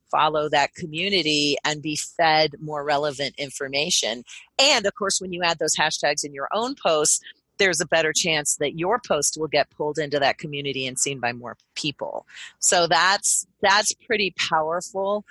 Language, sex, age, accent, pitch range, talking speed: English, female, 40-59, American, 140-180 Hz, 175 wpm